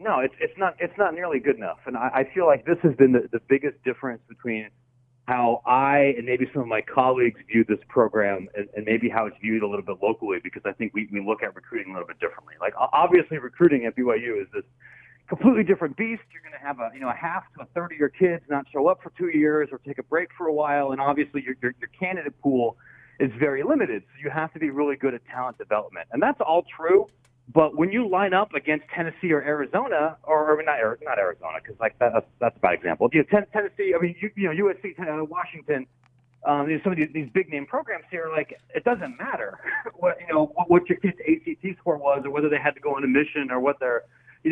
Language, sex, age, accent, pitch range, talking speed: English, male, 40-59, American, 130-175 Hz, 250 wpm